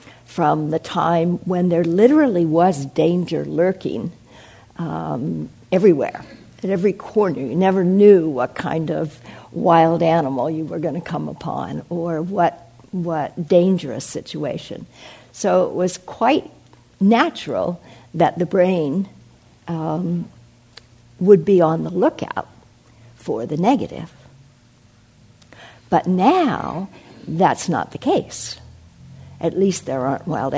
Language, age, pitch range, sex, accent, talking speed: English, 60-79, 130-200 Hz, female, American, 120 wpm